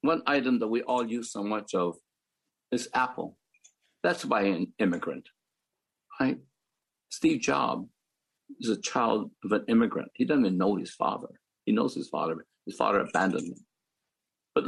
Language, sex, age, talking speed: English, male, 60-79, 165 wpm